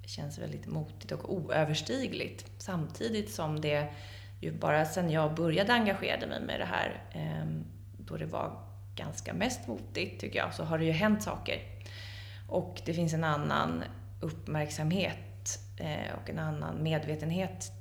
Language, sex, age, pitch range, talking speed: Swedish, female, 30-49, 90-110 Hz, 145 wpm